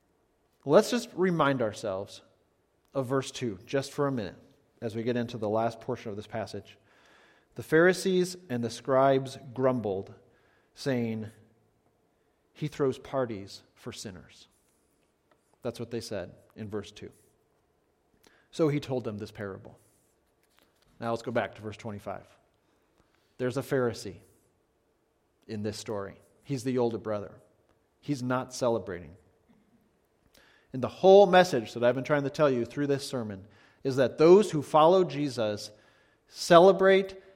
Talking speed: 140 wpm